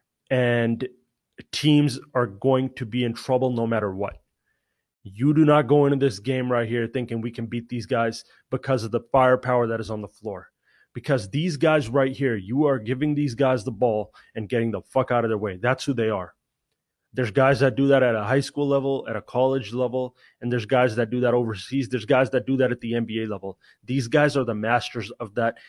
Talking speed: 225 wpm